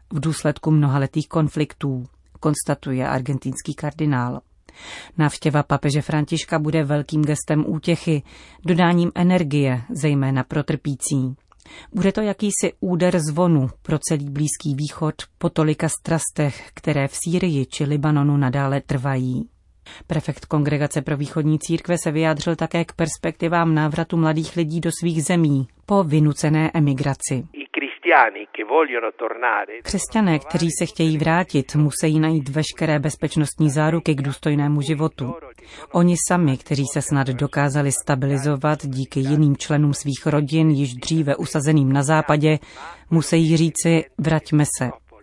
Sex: female